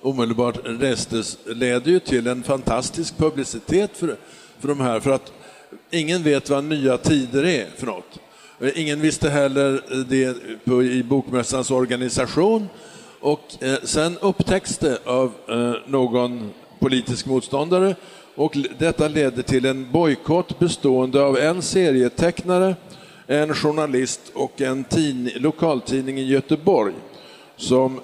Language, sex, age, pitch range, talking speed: Swedish, male, 50-69, 125-155 Hz, 125 wpm